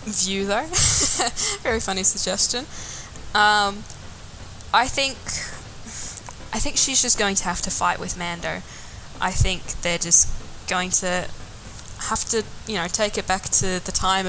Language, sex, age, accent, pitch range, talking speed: English, female, 10-29, Australian, 180-210 Hz, 145 wpm